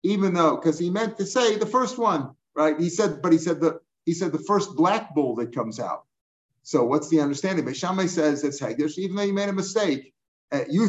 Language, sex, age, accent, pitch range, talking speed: English, male, 50-69, American, 150-190 Hz, 240 wpm